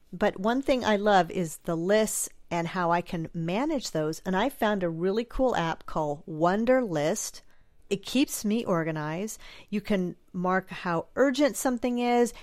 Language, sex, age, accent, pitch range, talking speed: English, female, 40-59, American, 170-215 Hz, 170 wpm